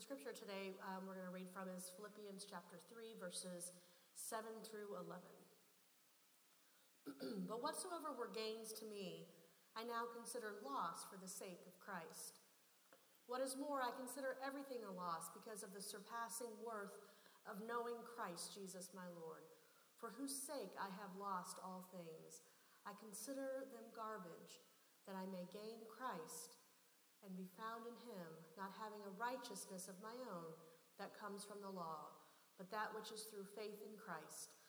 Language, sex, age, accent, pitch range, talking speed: English, female, 40-59, American, 185-230 Hz, 160 wpm